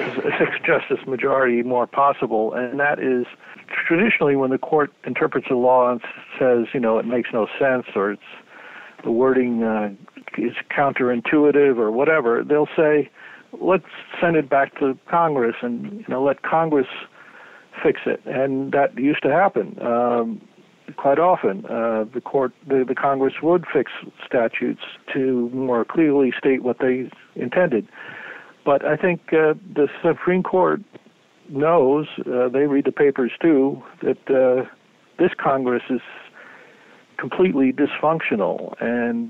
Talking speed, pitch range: 135 wpm, 120-145 Hz